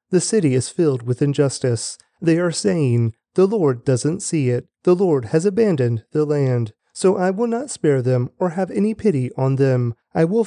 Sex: male